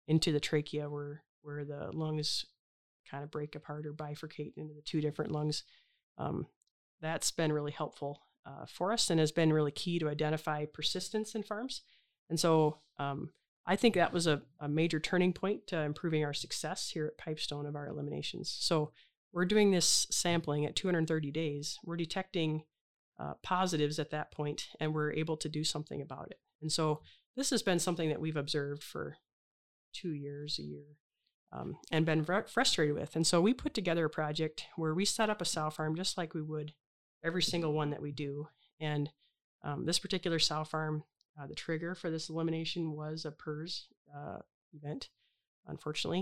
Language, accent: English, American